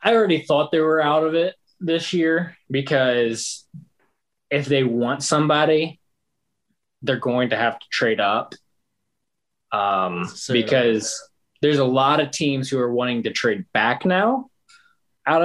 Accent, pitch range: American, 115-155 Hz